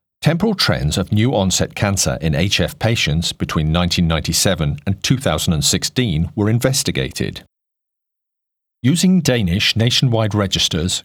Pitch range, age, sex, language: 85-110 Hz, 40-59, male, English